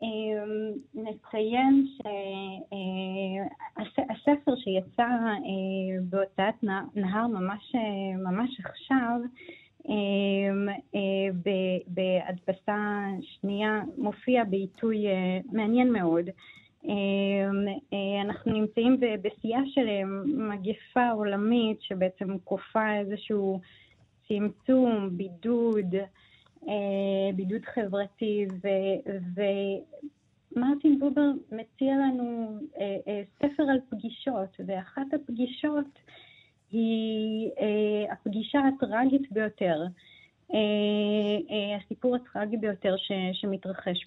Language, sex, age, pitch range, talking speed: Hebrew, female, 30-49, 195-235 Hz, 85 wpm